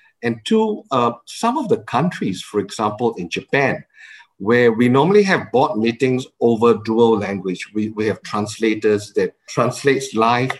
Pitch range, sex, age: 105-150 Hz, male, 50-69